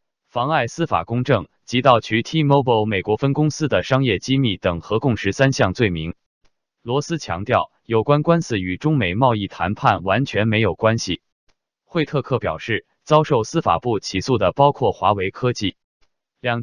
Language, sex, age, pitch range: Chinese, male, 20-39, 100-135 Hz